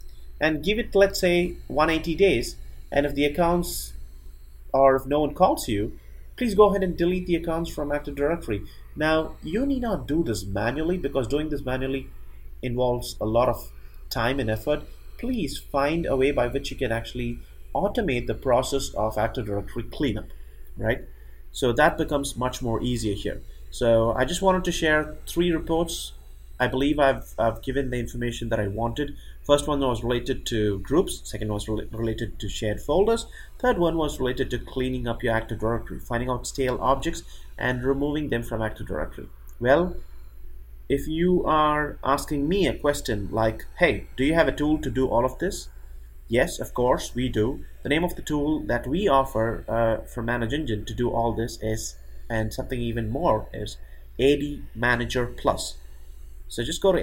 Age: 30-49